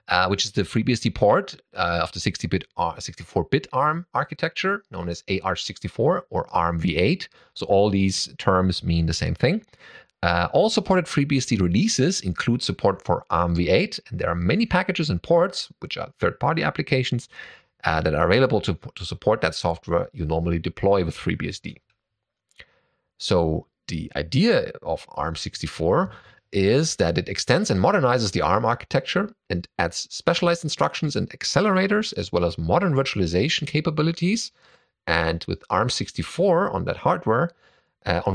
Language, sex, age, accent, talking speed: English, male, 30-49, German, 150 wpm